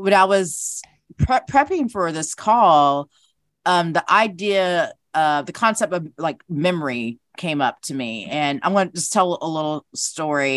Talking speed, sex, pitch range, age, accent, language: 170 wpm, female, 140-180 Hz, 40-59, American, English